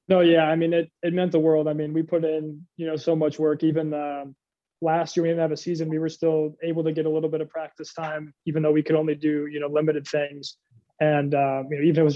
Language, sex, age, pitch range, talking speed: English, male, 20-39, 140-160 Hz, 280 wpm